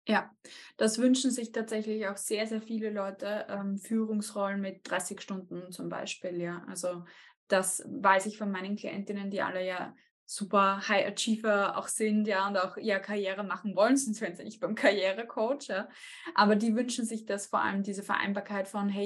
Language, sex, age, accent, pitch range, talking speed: German, female, 20-39, German, 195-220 Hz, 185 wpm